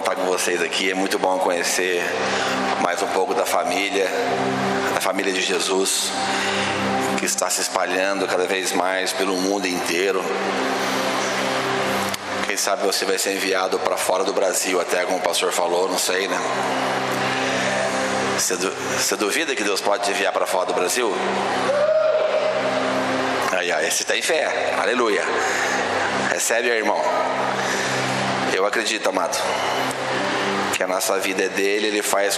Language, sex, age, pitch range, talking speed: Portuguese, male, 30-49, 65-100 Hz, 140 wpm